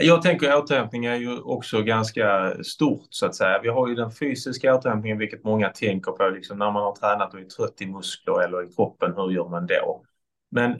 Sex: male